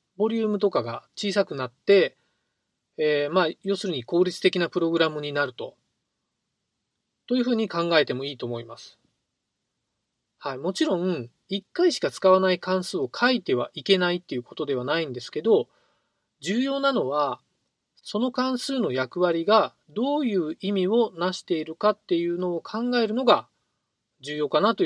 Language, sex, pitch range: Japanese, male, 150-225 Hz